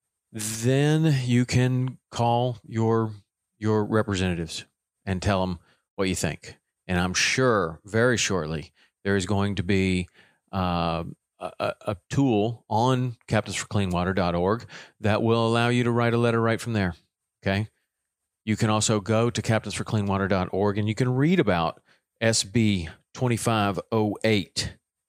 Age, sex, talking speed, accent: 40-59, male, 130 wpm, American